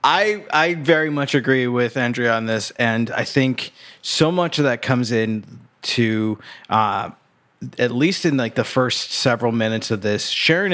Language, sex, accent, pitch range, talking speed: English, male, American, 110-130 Hz, 175 wpm